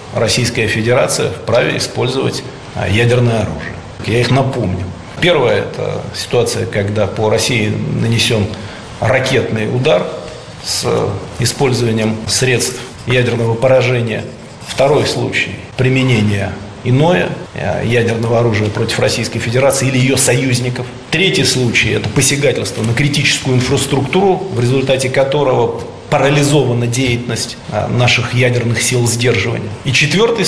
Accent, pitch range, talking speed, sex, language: native, 115-140 Hz, 105 wpm, male, Russian